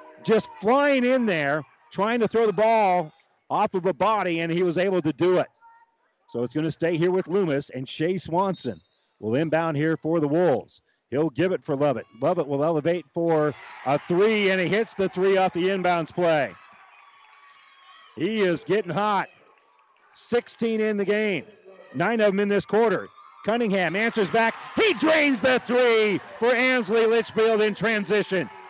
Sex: male